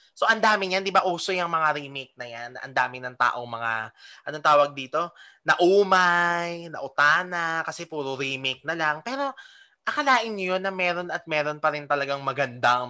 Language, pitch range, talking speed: Filipino, 140-220 Hz, 185 wpm